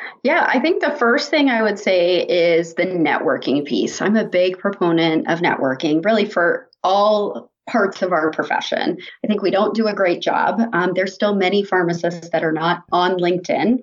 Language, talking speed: English, 190 wpm